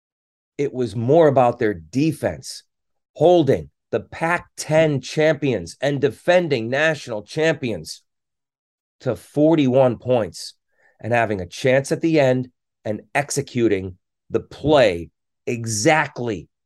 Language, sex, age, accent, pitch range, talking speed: English, male, 30-49, American, 110-165 Hz, 105 wpm